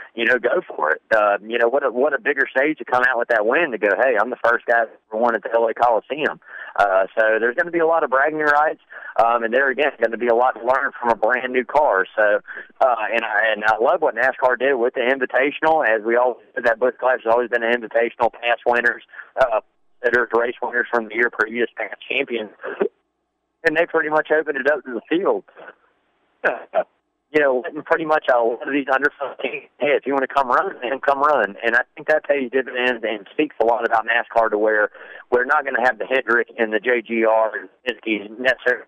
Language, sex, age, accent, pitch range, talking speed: English, male, 30-49, American, 115-145 Hz, 235 wpm